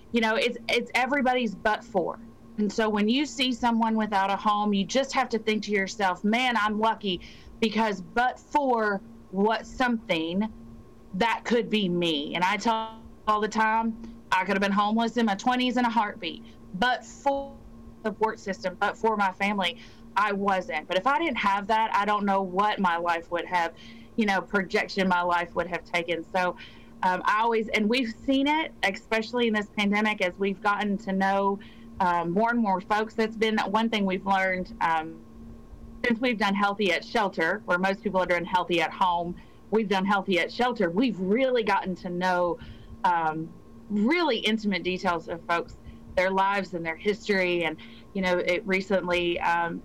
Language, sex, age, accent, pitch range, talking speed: English, female, 30-49, American, 180-225 Hz, 185 wpm